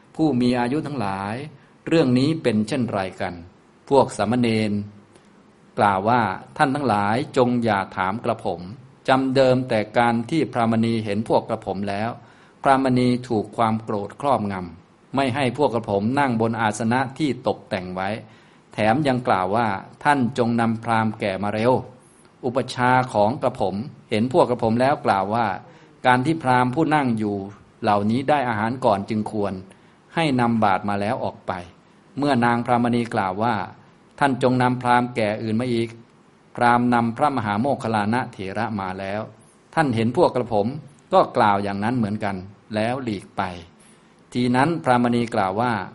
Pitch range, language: 105-125 Hz, Thai